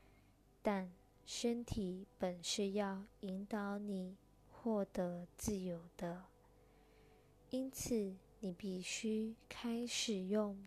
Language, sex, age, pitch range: Chinese, female, 20-39, 190-230 Hz